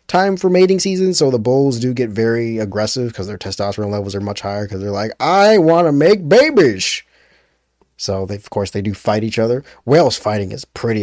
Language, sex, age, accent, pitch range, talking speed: English, male, 20-39, American, 75-120 Hz, 210 wpm